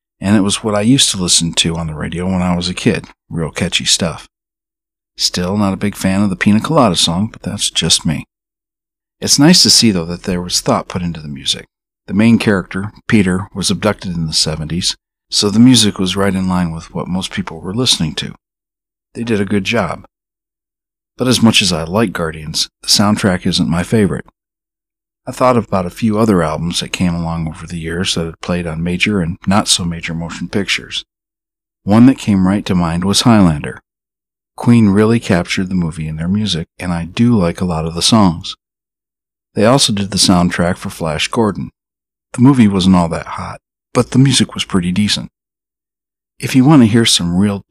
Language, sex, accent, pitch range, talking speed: English, male, American, 85-110 Hz, 200 wpm